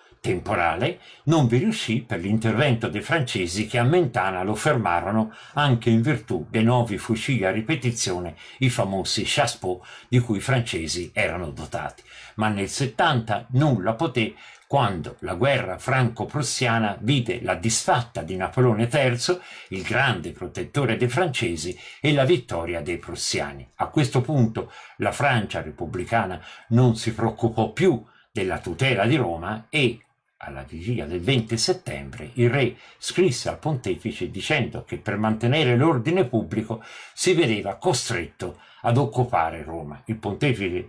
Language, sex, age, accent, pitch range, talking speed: Italian, male, 50-69, native, 105-130 Hz, 140 wpm